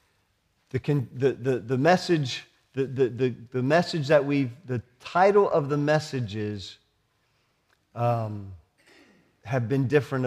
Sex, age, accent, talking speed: male, 40-59, American, 80 wpm